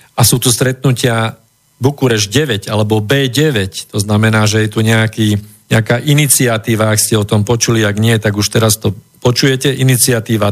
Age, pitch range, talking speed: 50-69, 110-135 Hz, 165 wpm